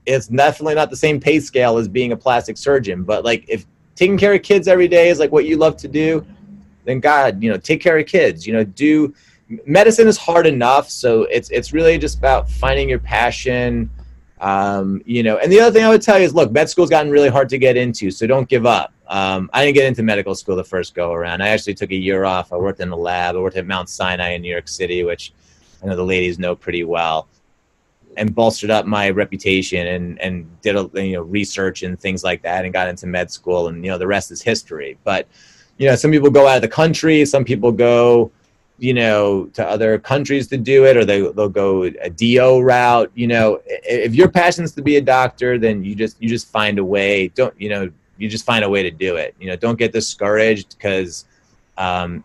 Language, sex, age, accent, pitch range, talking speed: English, male, 30-49, American, 95-145 Hz, 240 wpm